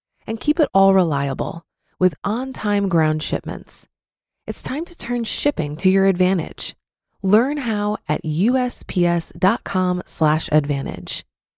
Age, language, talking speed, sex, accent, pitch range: 20-39, English, 115 wpm, female, American, 175-235 Hz